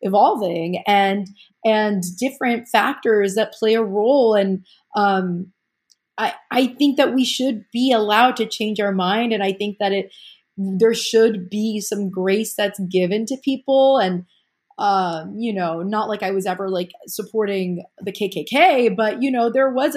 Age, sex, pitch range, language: 30-49, female, 195-240 Hz, English